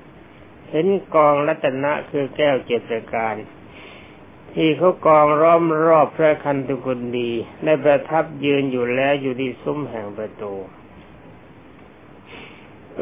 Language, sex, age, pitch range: Thai, male, 60-79, 125-155 Hz